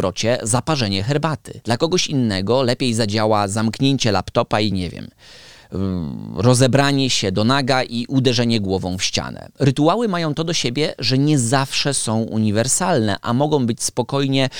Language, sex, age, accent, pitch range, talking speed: Polish, male, 20-39, native, 105-135 Hz, 145 wpm